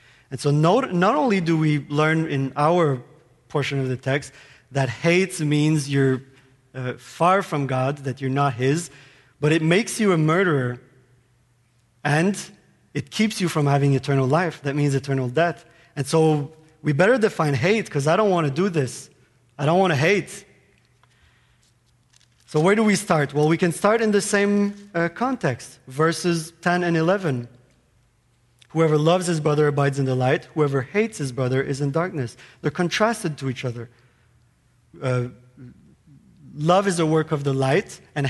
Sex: male